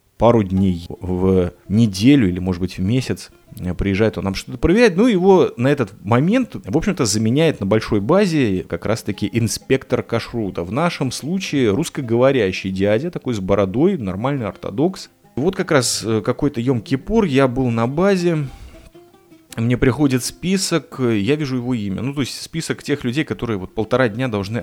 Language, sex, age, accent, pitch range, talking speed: Russian, male, 30-49, native, 105-140 Hz, 160 wpm